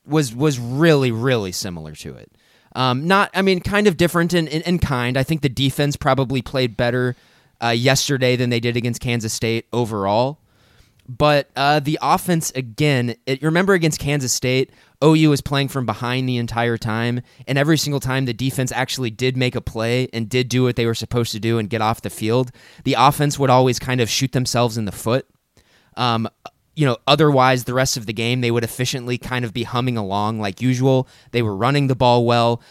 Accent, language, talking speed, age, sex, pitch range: American, English, 205 wpm, 20-39, male, 115-135 Hz